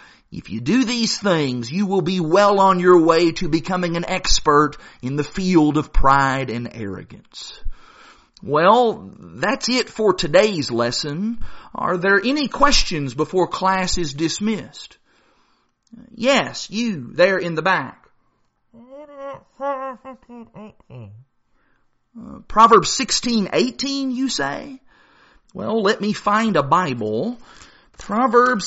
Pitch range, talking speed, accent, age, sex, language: 150-245 Hz, 115 wpm, American, 40-59, male, English